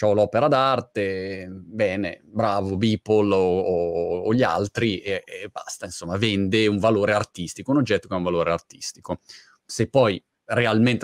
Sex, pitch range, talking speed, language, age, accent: male, 100-125 Hz, 145 wpm, Italian, 30-49, native